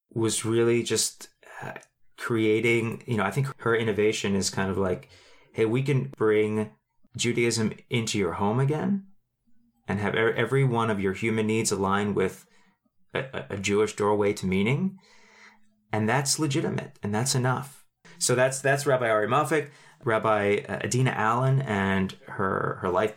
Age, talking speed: 30-49, 150 wpm